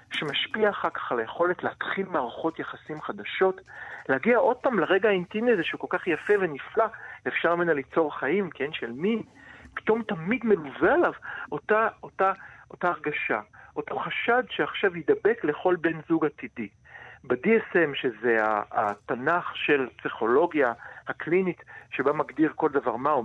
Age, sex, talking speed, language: 50-69, male, 140 wpm, Hebrew